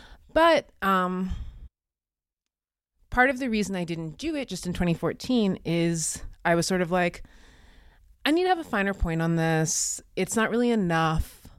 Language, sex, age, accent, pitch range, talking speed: English, female, 30-49, American, 150-205 Hz, 165 wpm